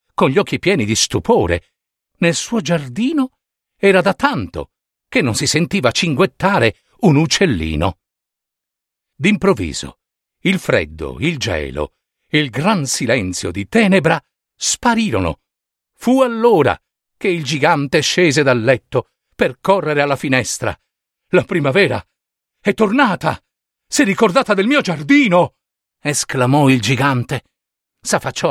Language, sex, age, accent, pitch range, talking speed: Italian, male, 50-69, native, 135-230 Hz, 120 wpm